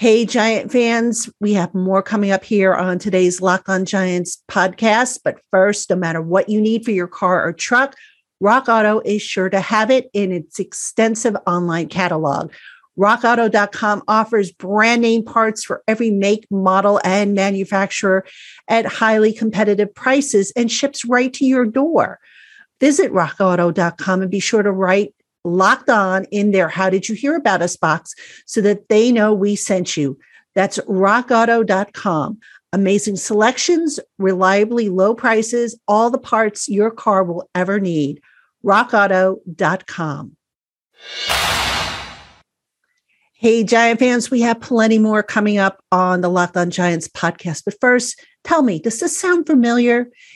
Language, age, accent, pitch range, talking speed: English, 50-69, American, 190-230 Hz, 140 wpm